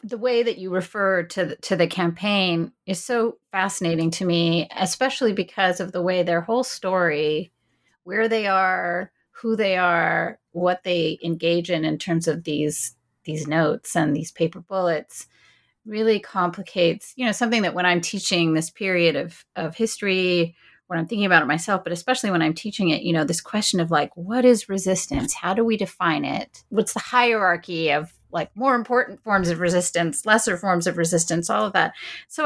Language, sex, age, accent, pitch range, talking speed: English, female, 30-49, American, 165-215 Hz, 185 wpm